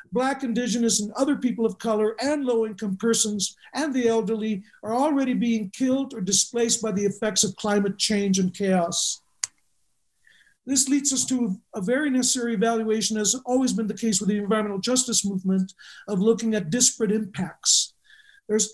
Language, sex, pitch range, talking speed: English, male, 205-250 Hz, 165 wpm